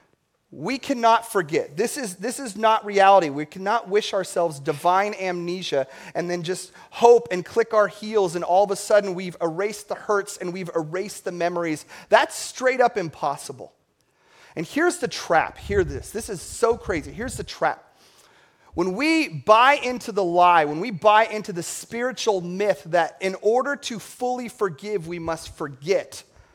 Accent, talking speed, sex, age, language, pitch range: American, 170 wpm, male, 30-49, English, 170-225 Hz